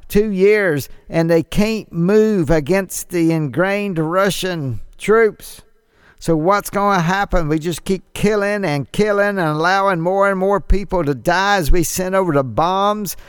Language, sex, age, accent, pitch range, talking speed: English, male, 50-69, American, 150-195 Hz, 165 wpm